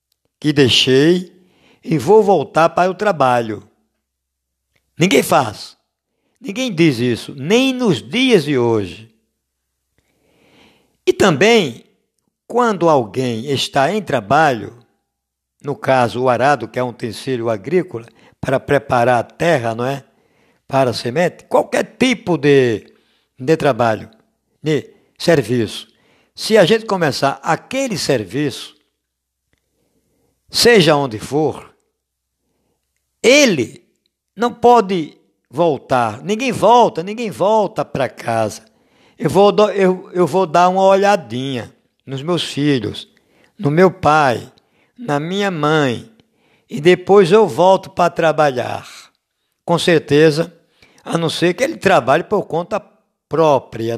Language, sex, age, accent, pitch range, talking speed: Portuguese, male, 60-79, Brazilian, 120-185 Hz, 110 wpm